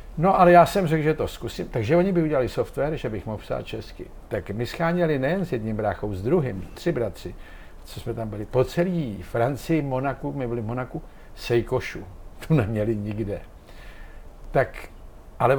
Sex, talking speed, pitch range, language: male, 175 wpm, 115-145 Hz, Czech